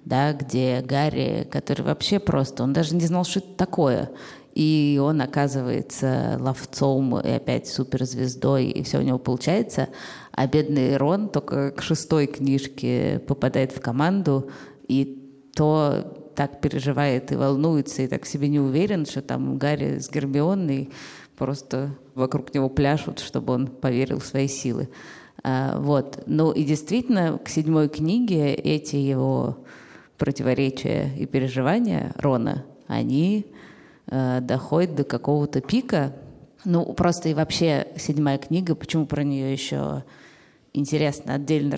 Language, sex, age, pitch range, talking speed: Russian, female, 20-39, 135-150 Hz, 130 wpm